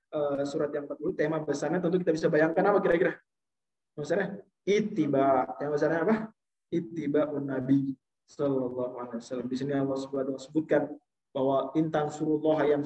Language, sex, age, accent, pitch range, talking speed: Indonesian, male, 20-39, native, 150-220 Hz, 150 wpm